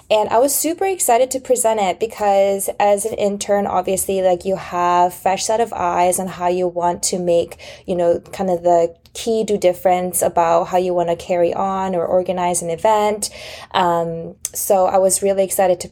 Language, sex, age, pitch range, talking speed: English, female, 20-39, 175-205 Hz, 195 wpm